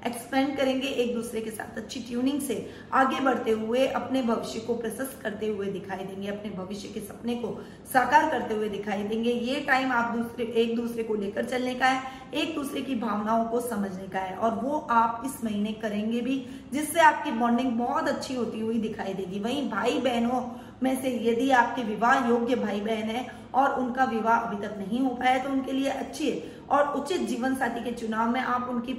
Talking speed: 130 wpm